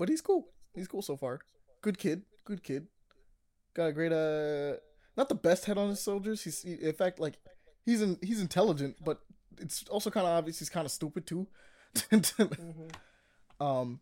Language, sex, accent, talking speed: English, male, American, 185 wpm